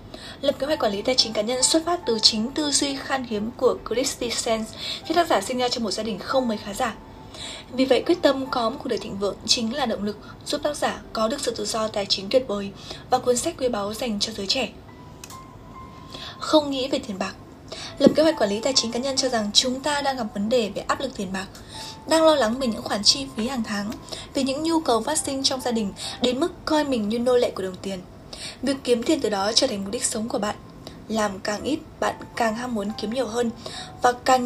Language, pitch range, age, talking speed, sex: Vietnamese, 215-270 Hz, 10-29, 260 wpm, female